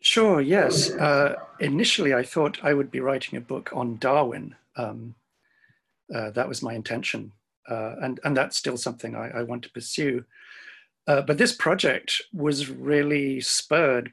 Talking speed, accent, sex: 160 wpm, British, male